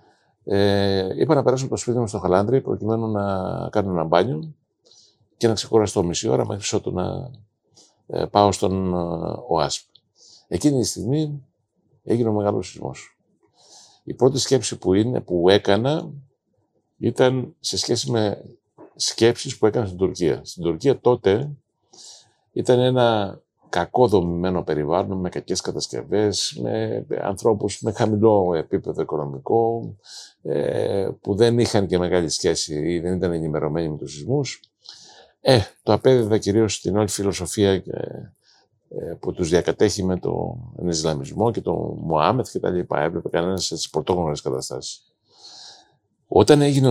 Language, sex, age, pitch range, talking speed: Greek, male, 50-69, 90-120 Hz, 135 wpm